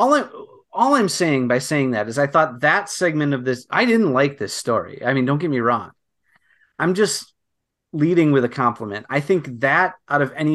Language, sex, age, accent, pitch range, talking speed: English, male, 30-49, American, 120-145 Hz, 210 wpm